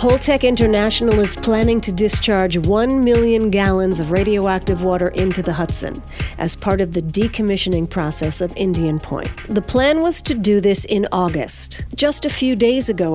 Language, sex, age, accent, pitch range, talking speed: English, female, 50-69, American, 175-220 Hz, 170 wpm